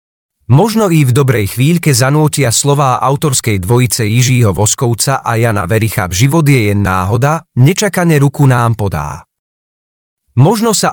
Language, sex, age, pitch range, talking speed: Czech, male, 40-59, 120-165 Hz, 130 wpm